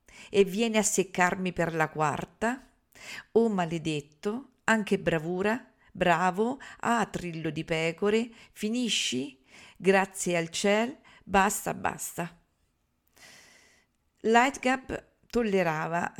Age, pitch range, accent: 50-69, 160-205 Hz, native